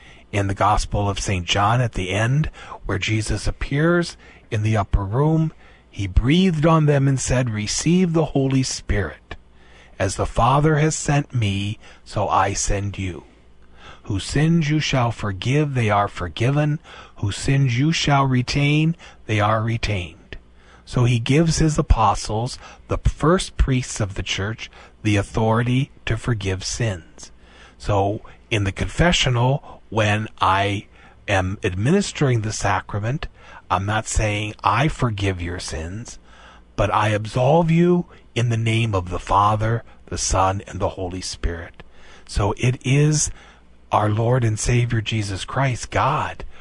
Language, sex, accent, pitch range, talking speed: English, male, American, 95-130 Hz, 145 wpm